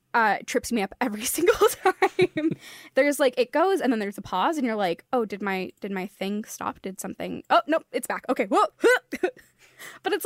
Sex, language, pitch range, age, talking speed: female, English, 205-270 Hz, 10-29, 210 wpm